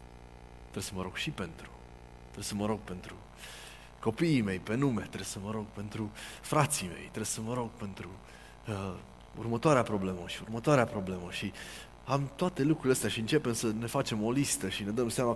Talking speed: 190 wpm